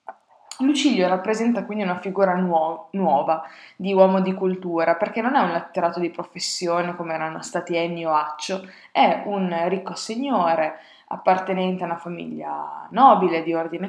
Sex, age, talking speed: female, 20-39, 145 wpm